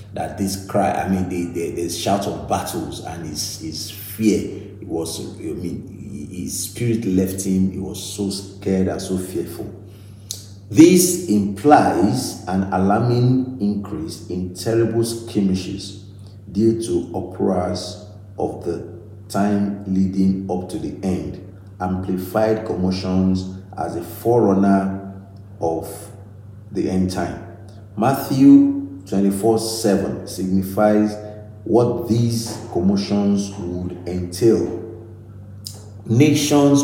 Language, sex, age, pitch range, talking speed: English, male, 50-69, 95-105 Hz, 110 wpm